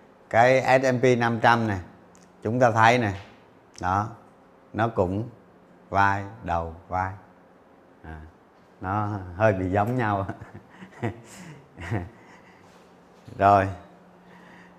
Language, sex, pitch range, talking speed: Vietnamese, male, 100-125 Hz, 85 wpm